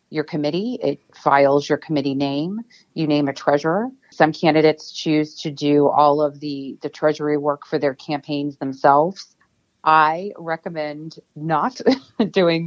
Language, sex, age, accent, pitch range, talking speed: English, female, 30-49, American, 145-160 Hz, 140 wpm